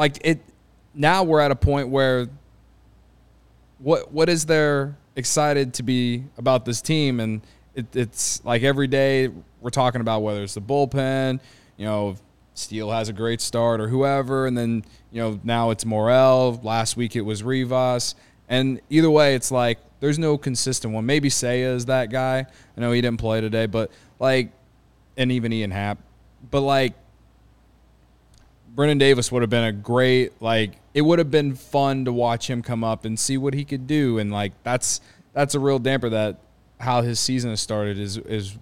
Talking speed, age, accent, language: 185 wpm, 20-39, American, English